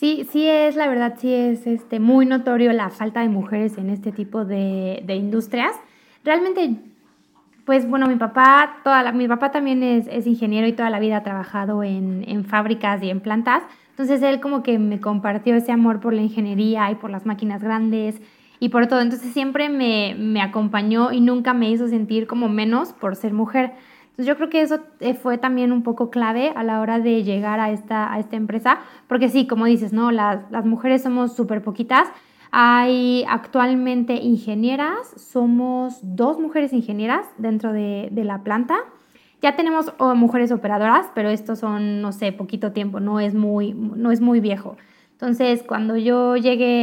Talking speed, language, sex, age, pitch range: 185 wpm, Spanish, female, 20-39, 215-250 Hz